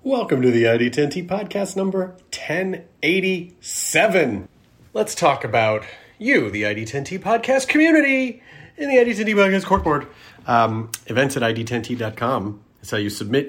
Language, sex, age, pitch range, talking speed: English, male, 30-49, 120-170 Hz, 125 wpm